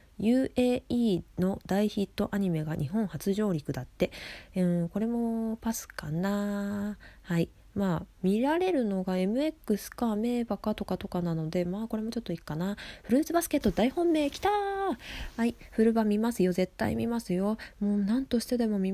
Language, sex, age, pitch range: Japanese, female, 20-39, 175-240 Hz